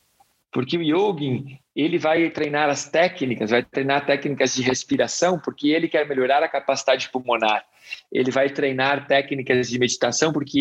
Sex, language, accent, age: male, Portuguese, Brazilian, 50-69